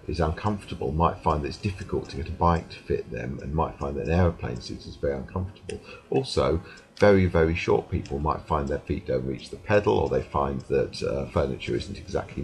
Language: English